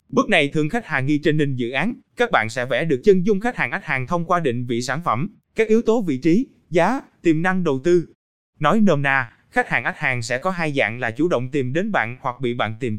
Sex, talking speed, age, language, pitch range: male, 270 wpm, 20-39, Vietnamese, 130-200 Hz